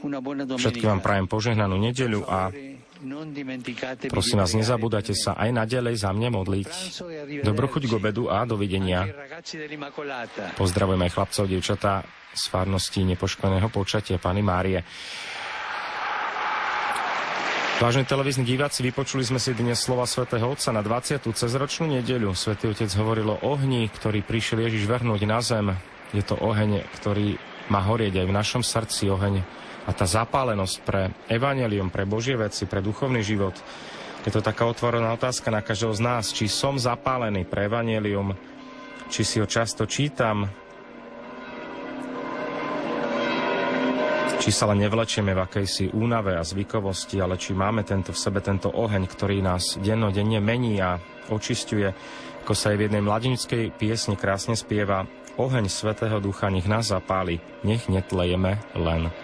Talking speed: 140 wpm